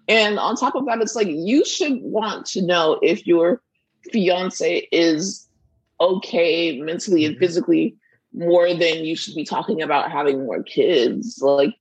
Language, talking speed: English, 160 wpm